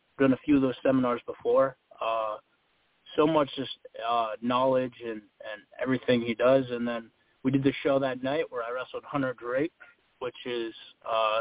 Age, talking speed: 30-49, 180 wpm